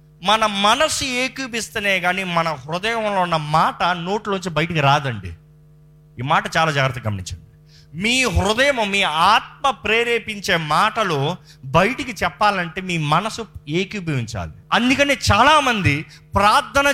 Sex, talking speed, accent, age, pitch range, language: male, 110 wpm, native, 30-49, 140-205 Hz, Telugu